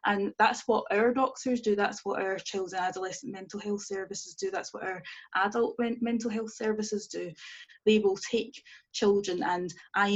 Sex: female